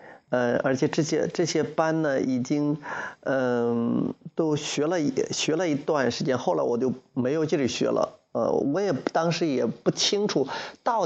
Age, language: 30-49, Chinese